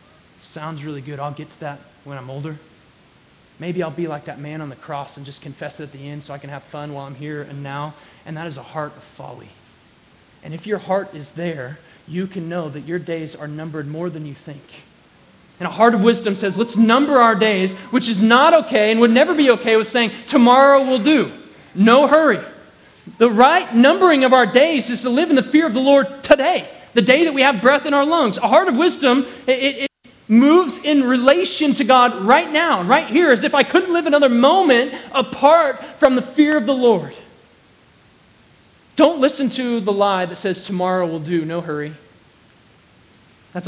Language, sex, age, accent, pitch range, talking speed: English, male, 30-49, American, 160-260 Hz, 210 wpm